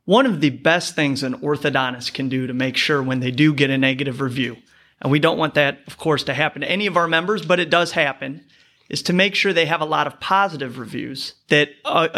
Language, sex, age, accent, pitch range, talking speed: English, male, 30-49, American, 140-175 Hz, 245 wpm